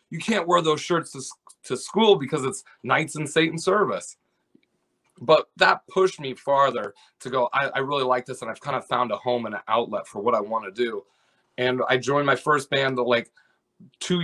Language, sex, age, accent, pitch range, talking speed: English, male, 30-49, American, 125-150 Hz, 215 wpm